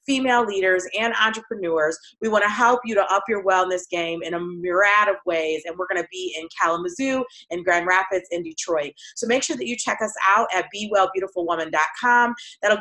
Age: 30-49